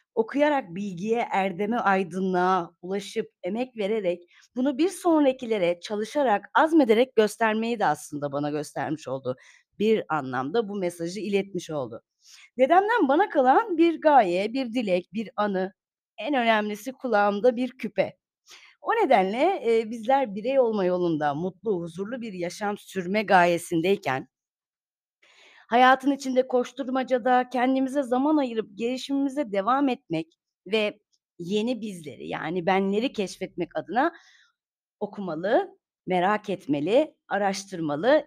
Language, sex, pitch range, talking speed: Turkish, female, 185-270 Hz, 110 wpm